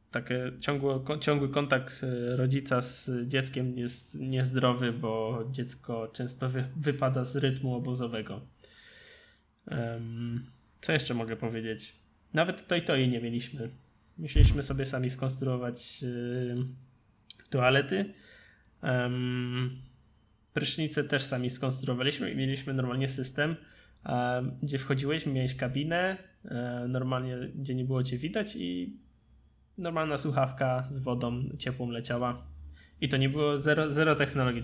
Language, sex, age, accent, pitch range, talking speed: Polish, male, 20-39, native, 125-140 Hz, 110 wpm